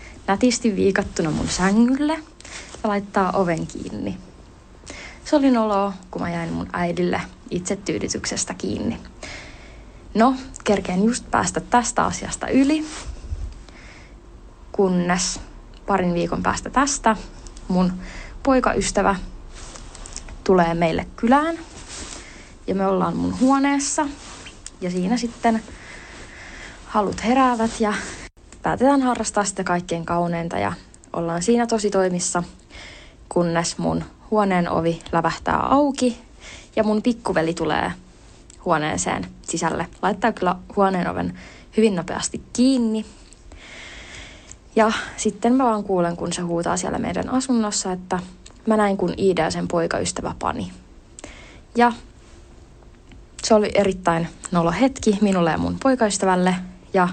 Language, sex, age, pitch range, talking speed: Finnish, female, 20-39, 175-235 Hz, 110 wpm